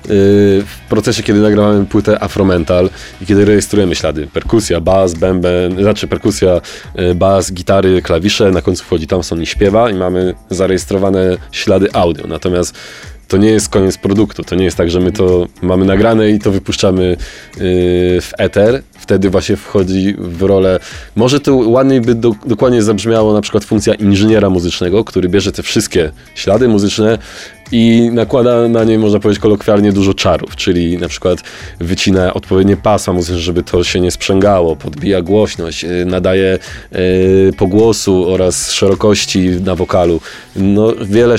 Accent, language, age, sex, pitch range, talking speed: native, Polish, 20-39, male, 90-105 Hz, 150 wpm